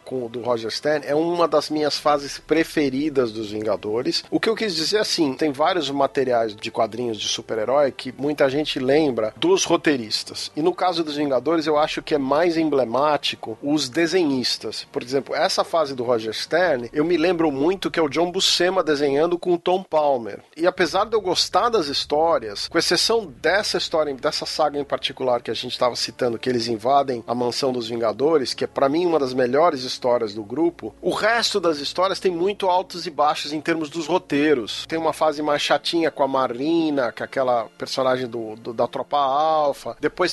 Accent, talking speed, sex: Brazilian, 195 wpm, male